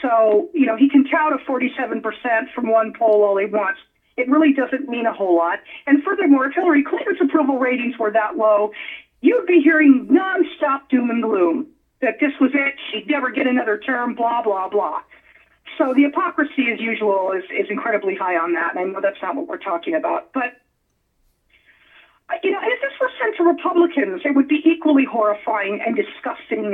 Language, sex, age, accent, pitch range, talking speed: English, female, 40-59, American, 220-315 Hz, 195 wpm